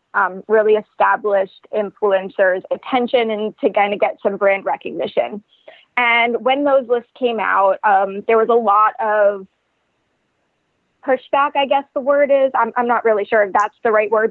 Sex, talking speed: female, 170 wpm